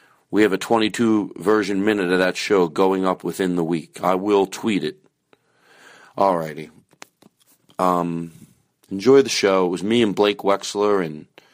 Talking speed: 155 wpm